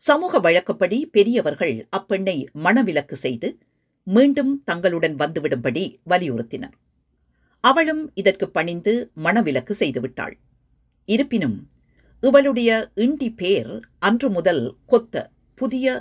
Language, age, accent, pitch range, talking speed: Tamil, 50-69, native, 155-245 Hz, 85 wpm